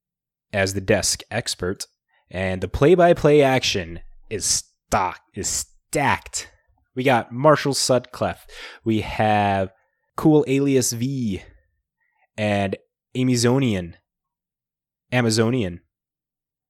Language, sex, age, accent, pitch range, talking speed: English, male, 20-39, American, 95-125 Hz, 85 wpm